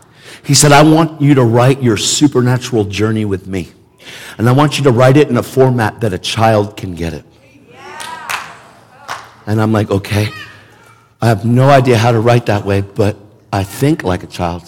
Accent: American